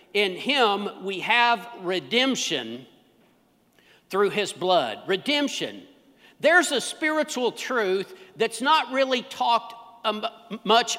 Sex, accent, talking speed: male, American, 100 wpm